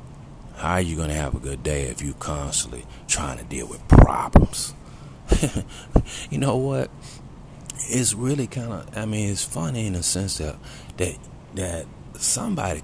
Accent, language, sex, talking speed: American, English, male, 160 wpm